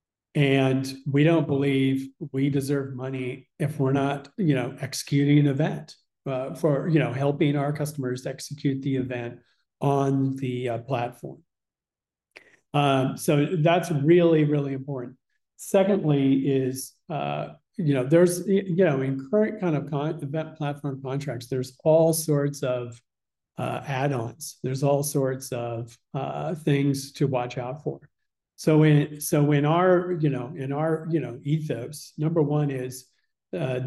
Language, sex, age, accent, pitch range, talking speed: English, male, 40-59, American, 130-150 Hz, 145 wpm